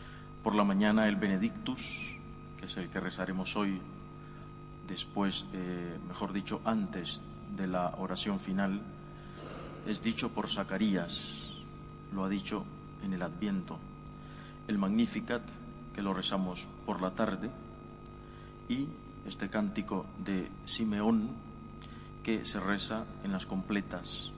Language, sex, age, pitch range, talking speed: Spanish, male, 40-59, 95-115 Hz, 120 wpm